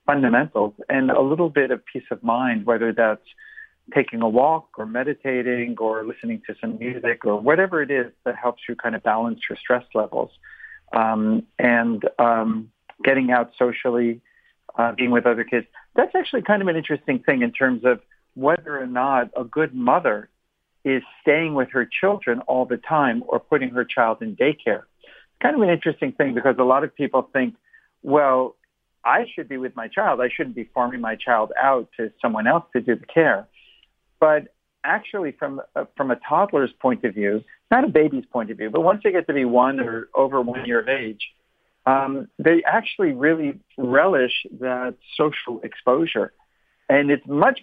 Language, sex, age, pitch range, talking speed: English, male, 50-69, 120-155 Hz, 185 wpm